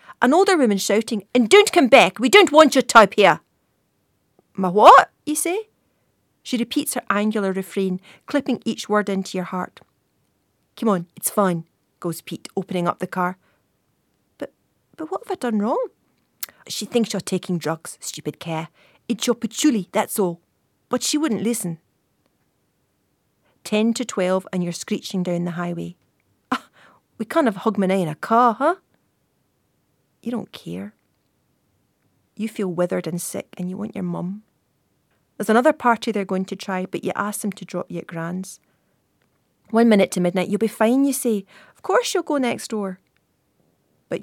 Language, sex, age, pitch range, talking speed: English, female, 40-59, 180-230 Hz, 170 wpm